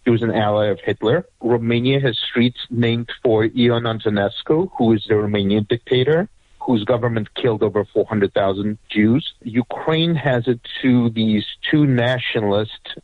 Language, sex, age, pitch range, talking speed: English, male, 50-69, 110-130 Hz, 145 wpm